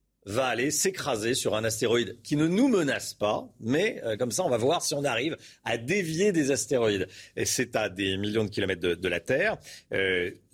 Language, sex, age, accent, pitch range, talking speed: French, male, 40-59, French, 100-130 Hz, 210 wpm